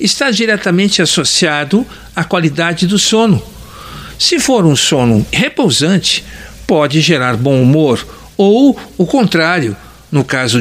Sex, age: male, 60-79